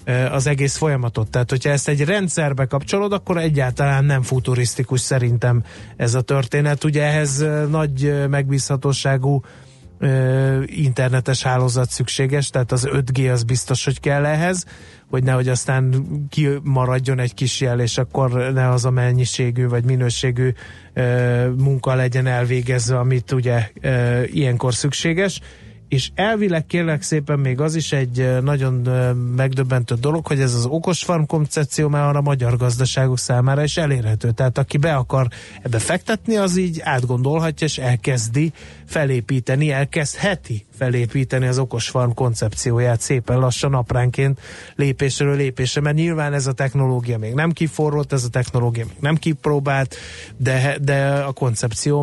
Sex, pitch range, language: male, 125-145 Hz, Hungarian